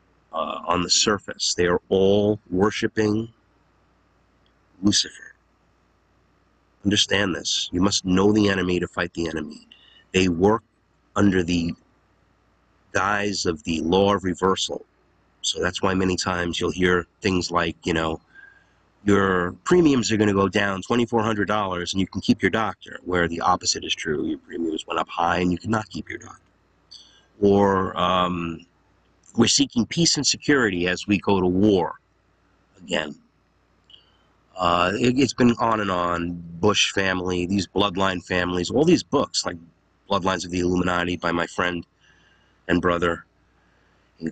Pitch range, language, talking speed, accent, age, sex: 90-105 Hz, English, 150 wpm, American, 30-49, male